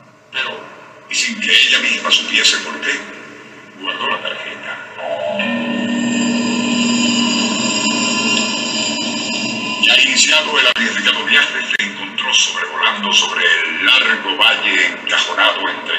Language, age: Spanish, 50-69